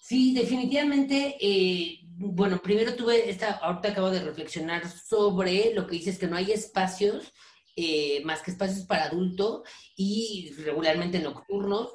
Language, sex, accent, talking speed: Spanish, female, Mexican, 140 wpm